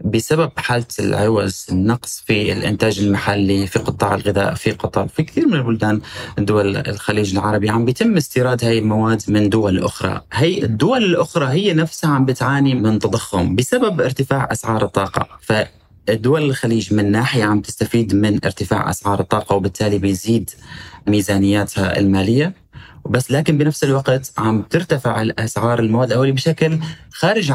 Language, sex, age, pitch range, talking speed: Arabic, male, 30-49, 100-125 Hz, 140 wpm